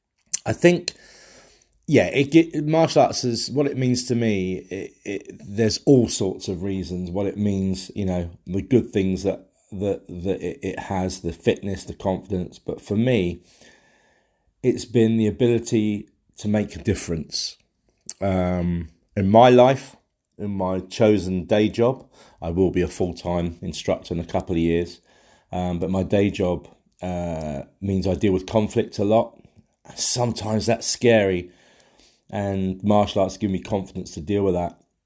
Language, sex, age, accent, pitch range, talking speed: English, male, 40-59, British, 90-110 Hz, 165 wpm